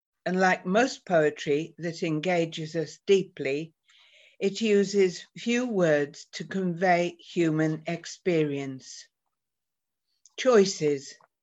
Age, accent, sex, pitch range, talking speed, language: 60-79, British, female, 150-200 Hz, 90 wpm, English